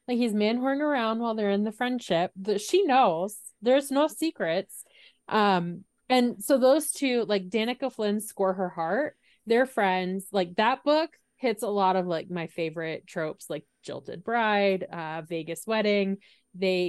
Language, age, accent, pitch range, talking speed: English, 20-39, American, 175-225 Hz, 165 wpm